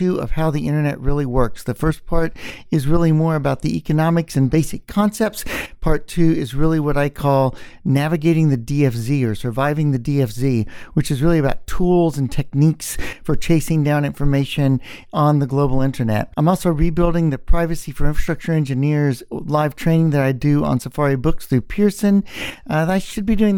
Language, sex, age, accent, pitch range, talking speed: English, male, 50-69, American, 135-170 Hz, 180 wpm